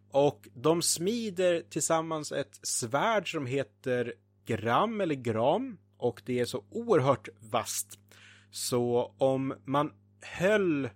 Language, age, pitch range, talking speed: Swedish, 30-49, 115-140 Hz, 115 wpm